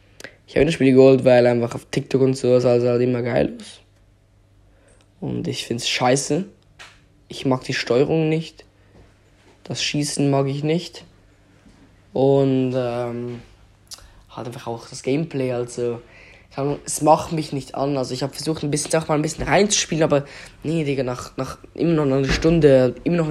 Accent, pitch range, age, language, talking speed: German, 125-155 Hz, 20-39, German, 170 wpm